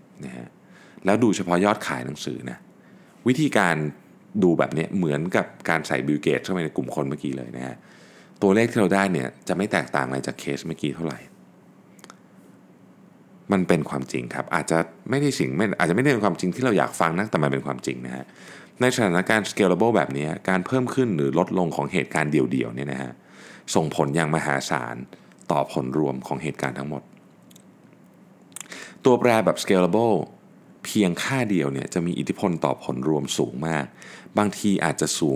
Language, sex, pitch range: Thai, male, 70-110 Hz